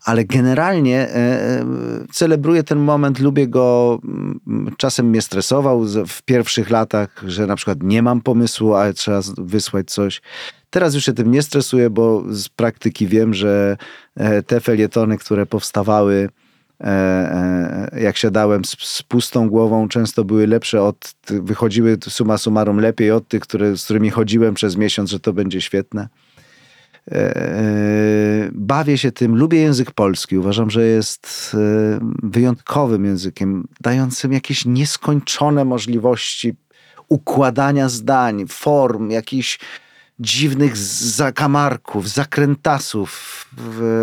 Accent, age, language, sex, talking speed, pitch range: native, 40-59, Polish, male, 115 wpm, 105-125 Hz